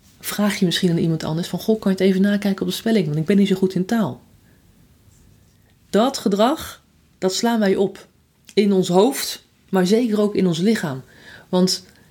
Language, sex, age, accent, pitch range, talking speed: Dutch, female, 30-49, Dutch, 180-220 Hz, 200 wpm